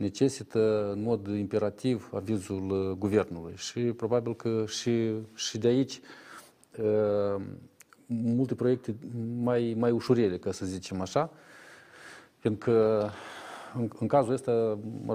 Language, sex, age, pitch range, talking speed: Romanian, male, 40-59, 110-145 Hz, 110 wpm